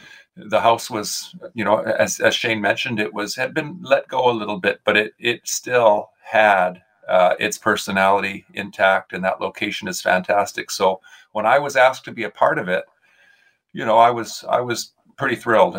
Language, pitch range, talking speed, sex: English, 100-125 Hz, 195 wpm, male